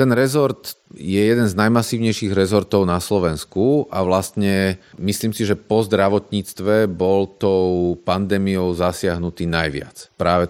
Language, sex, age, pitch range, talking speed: Slovak, male, 40-59, 90-100 Hz, 125 wpm